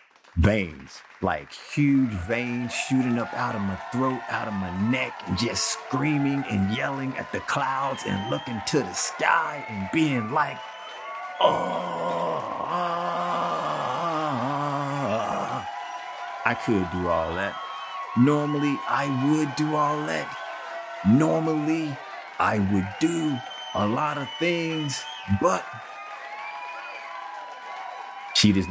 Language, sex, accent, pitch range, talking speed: English, male, American, 100-135 Hz, 110 wpm